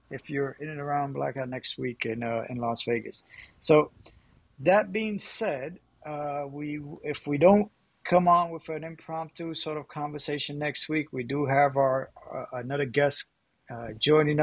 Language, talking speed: English, 170 wpm